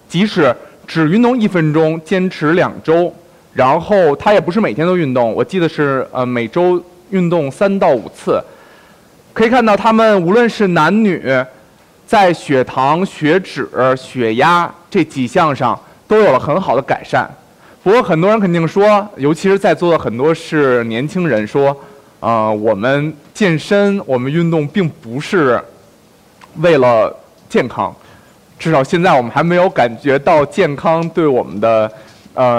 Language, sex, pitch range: Chinese, male, 140-200 Hz